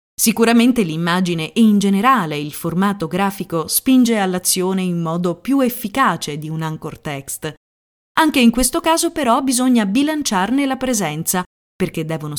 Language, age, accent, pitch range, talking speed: Italian, 30-49, native, 170-255 Hz, 140 wpm